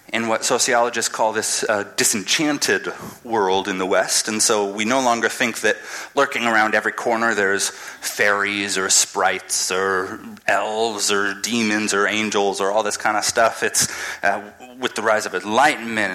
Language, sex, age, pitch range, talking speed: English, male, 30-49, 100-125 Hz, 165 wpm